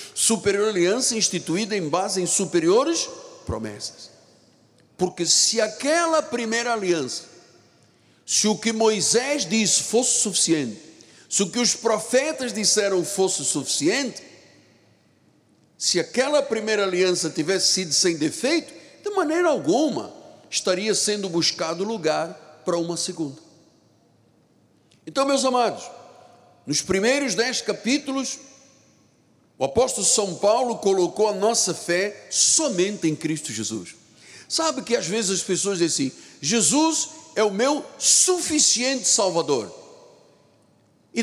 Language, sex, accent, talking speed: Portuguese, male, Brazilian, 115 wpm